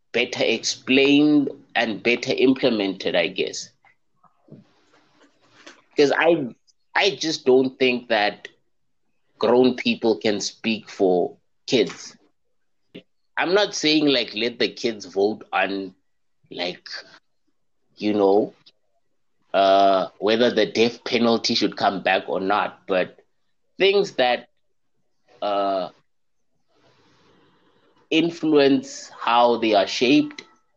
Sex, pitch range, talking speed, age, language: male, 110-155 Hz, 100 wpm, 20-39, English